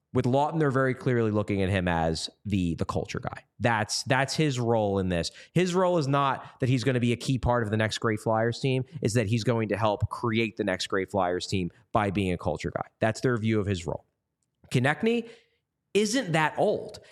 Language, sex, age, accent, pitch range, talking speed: English, male, 30-49, American, 105-170 Hz, 225 wpm